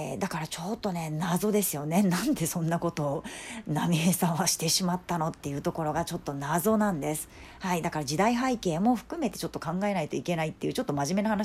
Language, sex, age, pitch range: Japanese, female, 40-59, 160-235 Hz